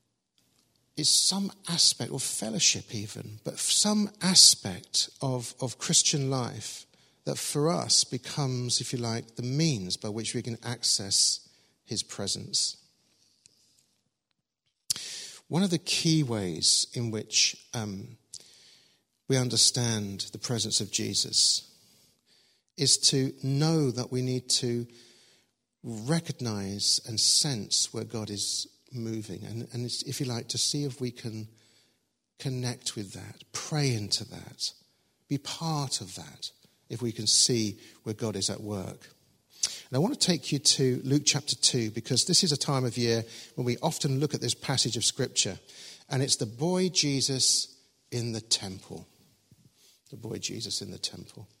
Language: English